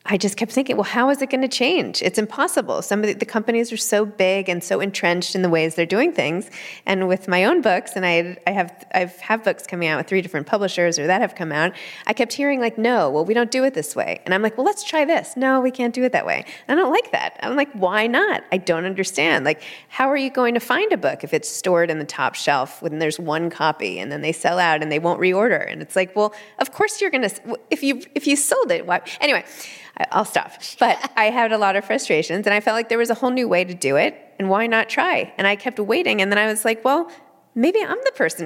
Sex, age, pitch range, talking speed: female, 20-39, 175-240 Hz, 275 wpm